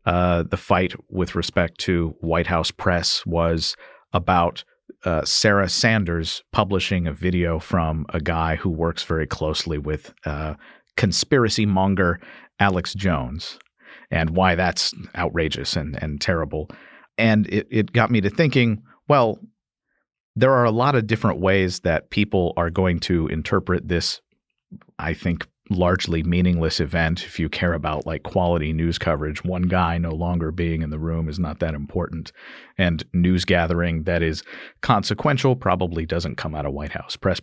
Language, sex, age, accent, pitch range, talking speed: English, male, 50-69, American, 85-100 Hz, 155 wpm